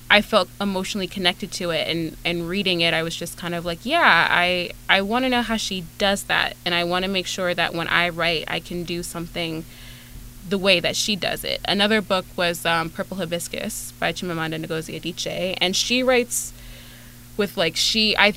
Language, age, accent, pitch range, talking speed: English, 20-39, American, 160-190 Hz, 205 wpm